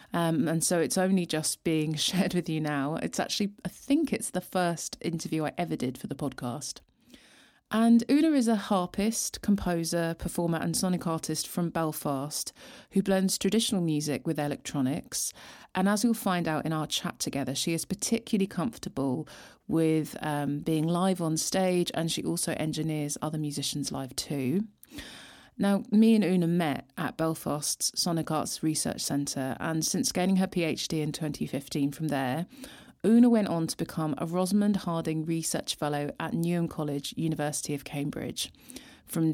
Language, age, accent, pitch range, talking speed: English, 30-49, British, 150-190 Hz, 160 wpm